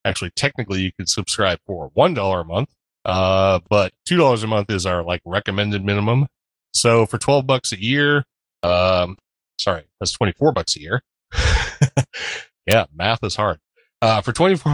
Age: 30-49